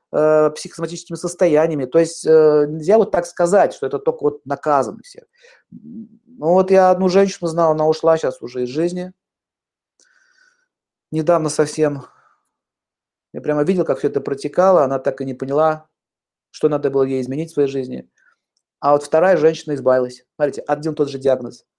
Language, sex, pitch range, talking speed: Russian, male, 140-185 Hz, 155 wpm